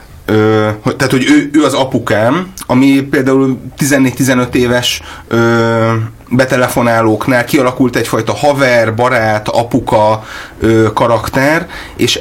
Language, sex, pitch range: Hungarian, male, 110-135 Hz